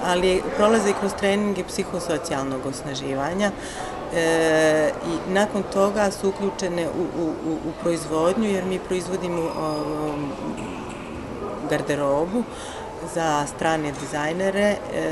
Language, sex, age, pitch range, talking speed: English, female, 30-49, 160-195 Hz, 105 wpm